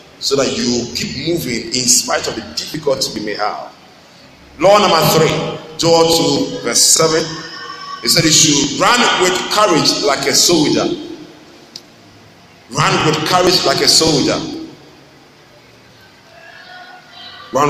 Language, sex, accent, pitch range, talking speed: English, male, Nigerian, 125-165 Hz, 125 wpm